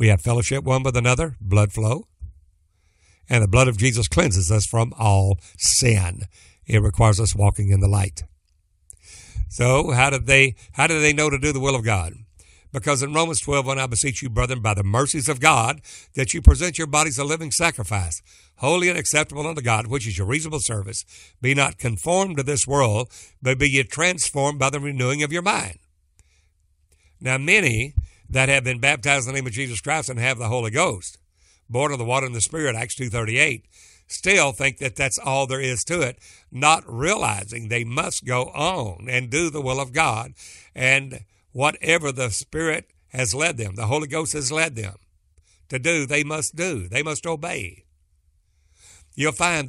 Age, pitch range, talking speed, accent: 60-79, 100-145 Hz, 185 wpm, American